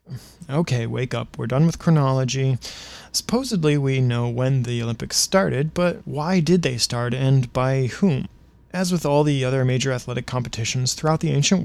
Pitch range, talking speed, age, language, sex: 125-165 Hz, 170 wpm, 20-39, English, male